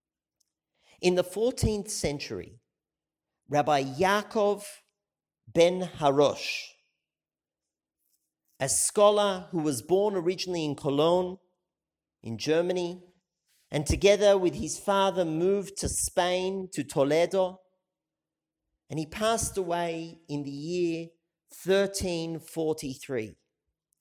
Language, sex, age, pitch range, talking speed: English, male, 40-59, 155-200 Hz, 90 wpm